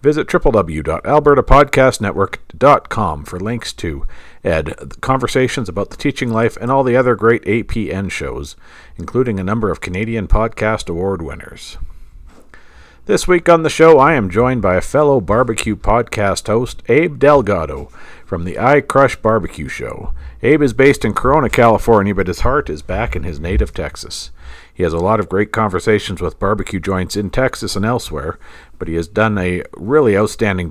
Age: 50-69